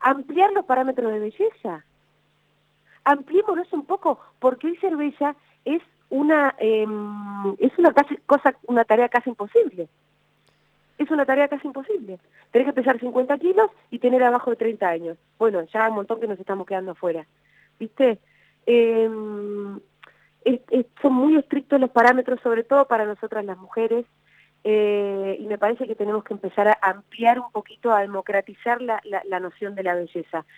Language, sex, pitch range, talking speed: Spanish, female, 195-265 Hz, 165 wpm